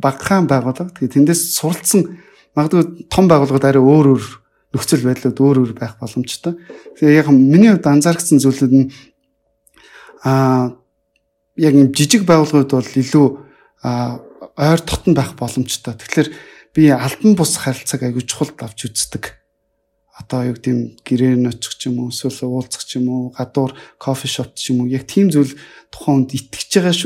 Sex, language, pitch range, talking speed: male, English, 130-165 Hz, 110 wpm